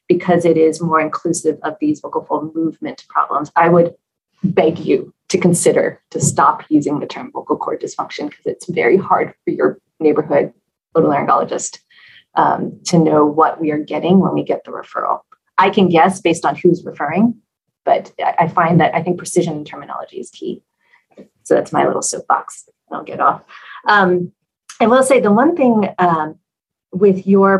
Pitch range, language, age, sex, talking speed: 170-205 Hz, English, 30-49, female, 175 wpm